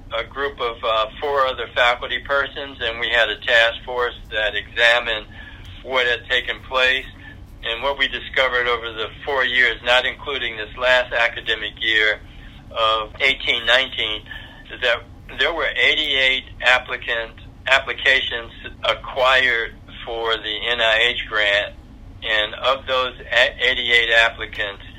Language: English